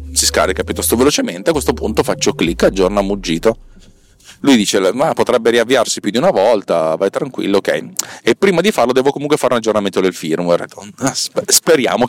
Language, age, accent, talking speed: Italian, 30-49, native, 175 wpm